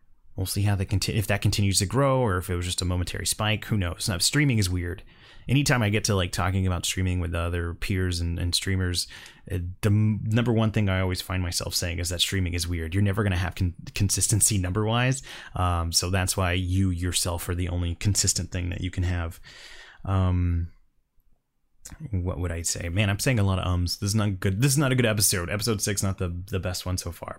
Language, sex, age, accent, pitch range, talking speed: English, male, 20-39, American, 90-115 Hz, 230 wpm